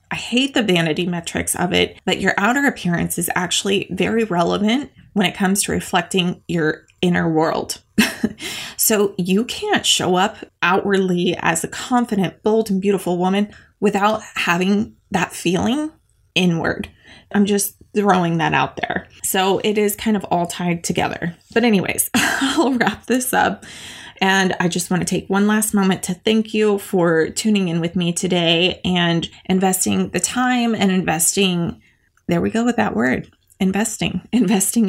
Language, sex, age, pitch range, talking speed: English, female, 20-39, 175-210 Hz, 160 wpm